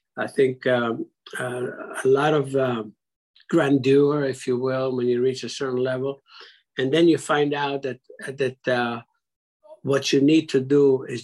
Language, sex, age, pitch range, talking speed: English, male, 60-79, 125-140 Hz, 170 wpm